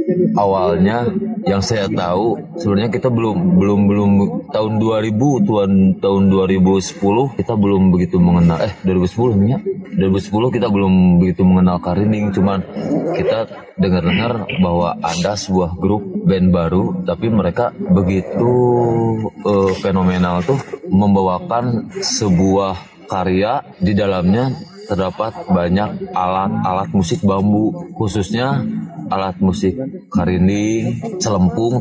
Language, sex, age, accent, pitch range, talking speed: Indonesian, male, 20-39, native, 95-130 Hz, 110 wpm